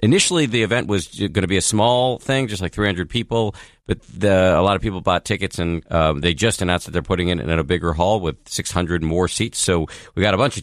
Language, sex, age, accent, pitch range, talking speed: English, male, 50-69, American, 75-105 Hz, 255 wpm